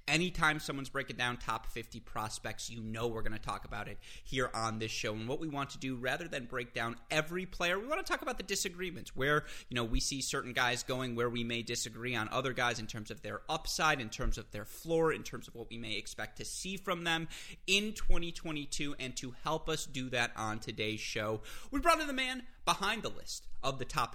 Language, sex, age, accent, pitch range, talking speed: English, male, 30-49, American, 115-155 Hz, 240 wpm